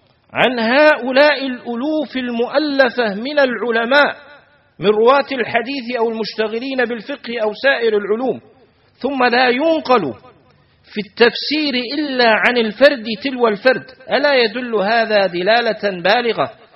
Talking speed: 105 wpm